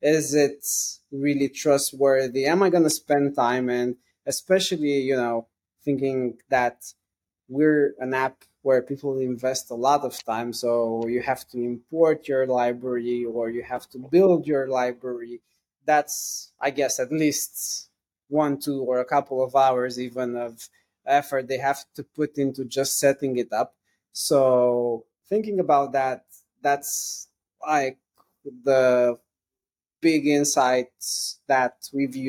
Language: English